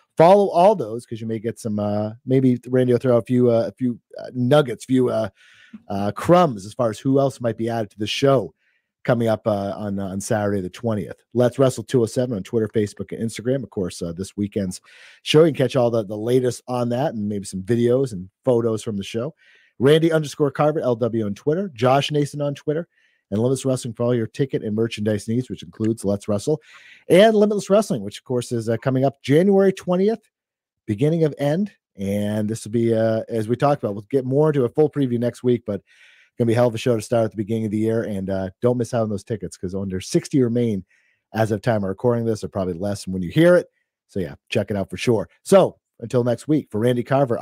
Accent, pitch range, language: American, 110-135 Hz, English